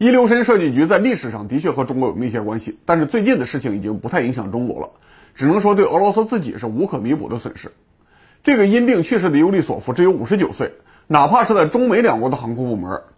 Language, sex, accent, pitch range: Chinese, male, Polish, 115-190 Hz